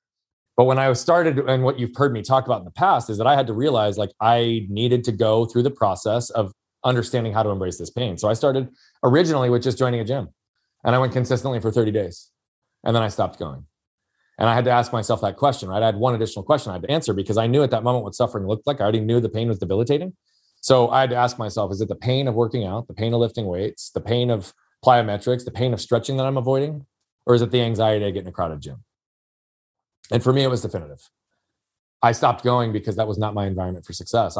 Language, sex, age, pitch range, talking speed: English, male, 30-49, 105-125 Hz, 255 wpm